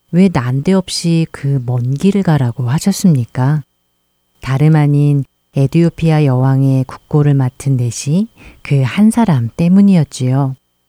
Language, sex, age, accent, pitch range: Korean, female, 40-59, native, 130-170 Hz